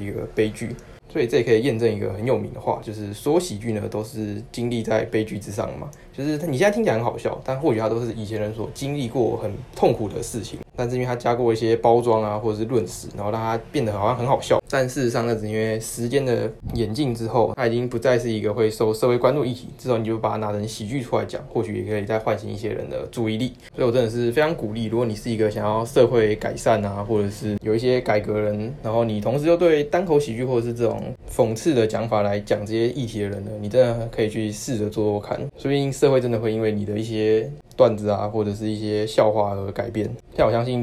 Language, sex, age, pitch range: Chinese, male, 20-39, 105-120 Hz